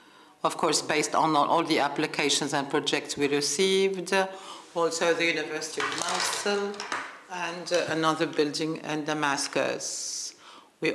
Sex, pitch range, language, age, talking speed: female, 155-175 Hz, English, 60-79, 120 wpm